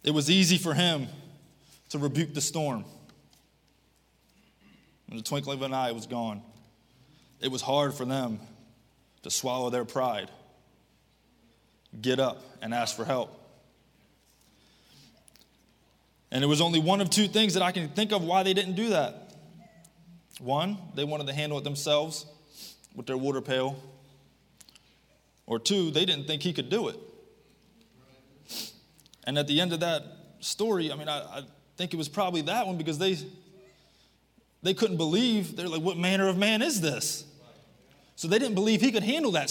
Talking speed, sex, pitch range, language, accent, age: 165 wpm, male, 135-195 Hz, English, American, 20-39